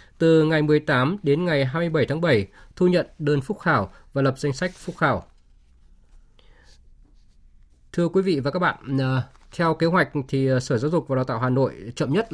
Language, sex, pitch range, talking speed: Vietnamese, male, 125-155 Hz, 190 wpm